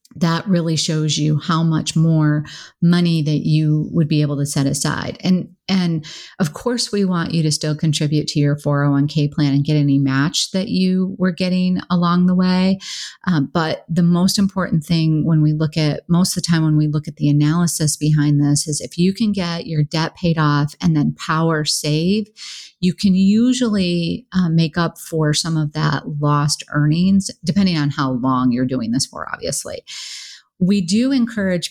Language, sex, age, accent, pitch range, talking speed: English, female, 40-59, American, 150-180 Hz, 190 wpm